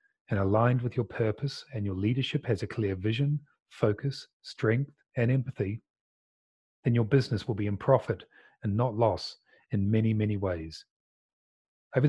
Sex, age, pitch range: male, 40-59, 105-130 Hz